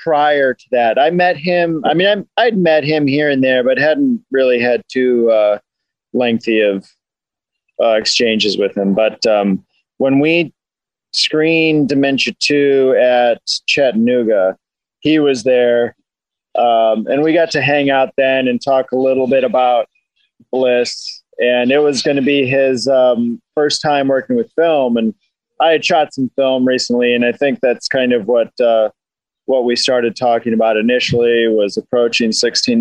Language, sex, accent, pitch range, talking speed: English, male, American, 120-145 Hz, 165 wpm